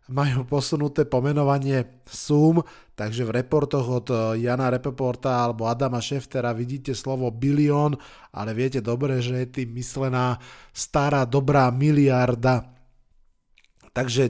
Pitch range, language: 125-145 Hz, Slovak